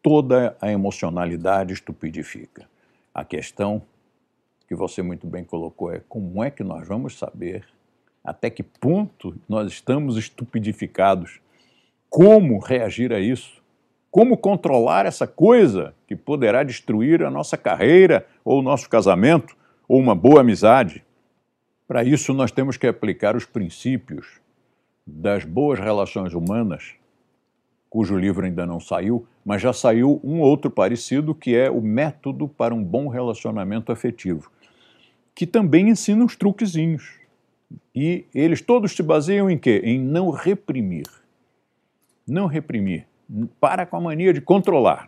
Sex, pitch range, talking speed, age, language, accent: male, 105-155 Hz, 135 wpm, 60-79, Portuguese, Brazilian